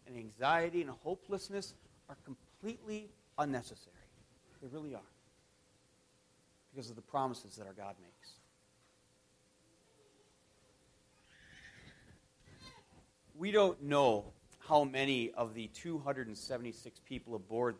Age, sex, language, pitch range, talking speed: 40-59, male, English, 120-170 Hz, 90 wpm